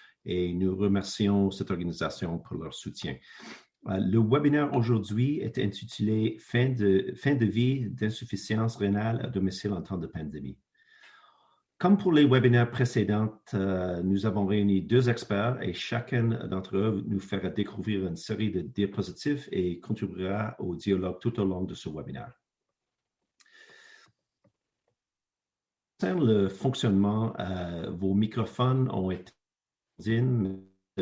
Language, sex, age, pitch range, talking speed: French, male, 50-69, 95-115 Hz, 135 wpm